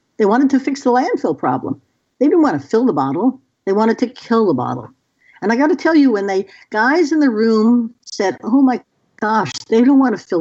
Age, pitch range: 60-79, 220-285 Hz